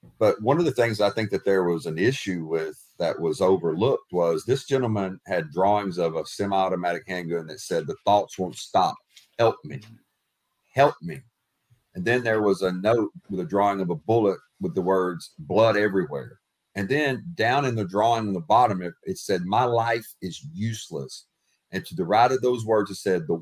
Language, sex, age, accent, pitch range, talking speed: English, male, 40-59, American, 95-130 Hz, 200 wpm